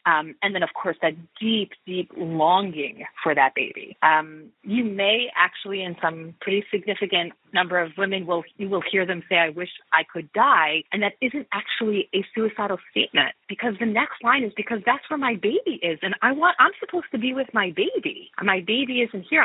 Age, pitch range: 30-49, 175-240 Hz